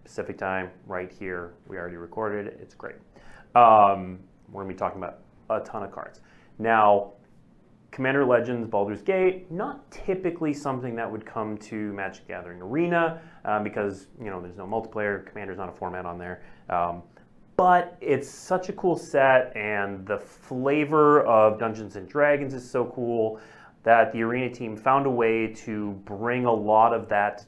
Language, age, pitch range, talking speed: English, 30-49, 105-150 Hz, 170 wpm